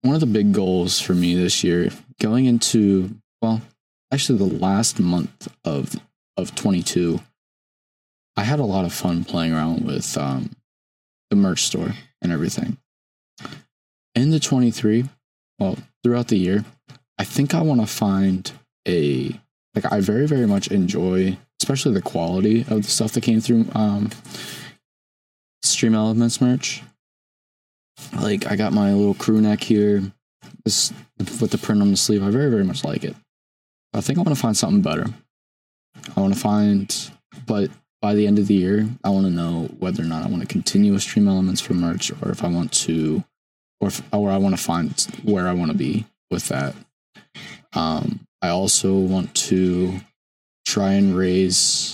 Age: 20-39